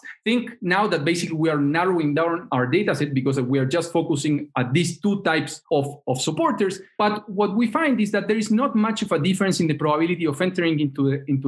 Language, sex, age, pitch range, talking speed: English, male, 40-59, 145-205 Hz, 220 wpm